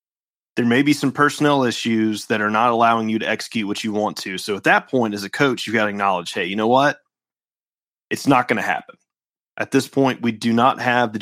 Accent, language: American, English